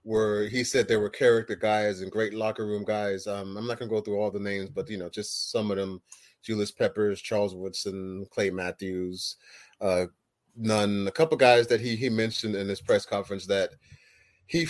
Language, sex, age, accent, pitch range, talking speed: English, male, 30-49, American, 105-140 Hz, 200 wpm